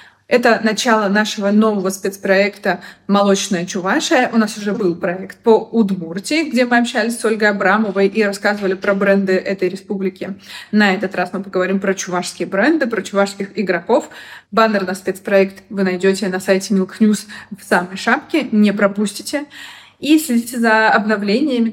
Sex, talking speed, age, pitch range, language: female, 150 wpm, 30-49, 195-230 Hz, Russian